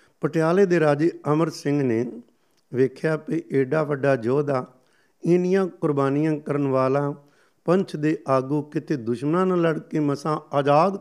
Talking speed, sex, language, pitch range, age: 135 wpm, male, Punjabi, 130-155 Hz, 50-69